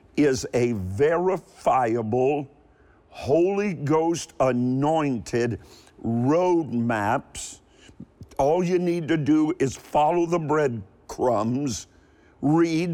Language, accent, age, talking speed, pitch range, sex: English, American, 50-69, 85 wpm, 125-160 Hz, male